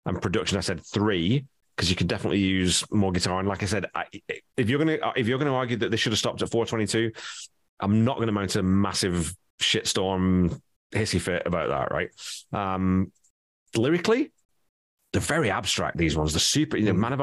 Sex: male